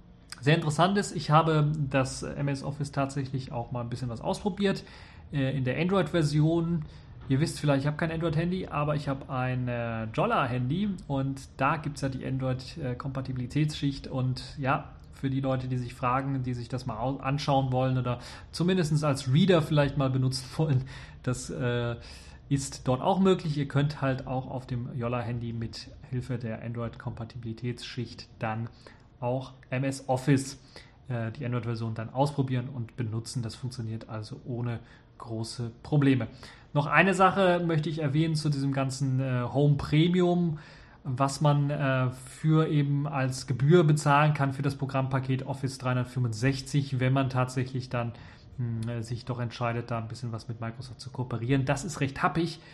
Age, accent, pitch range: 30-49, German, 125-145 Hz